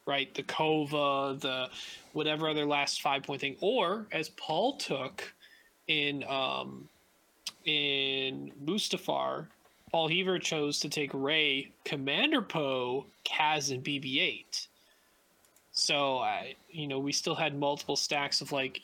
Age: 20-39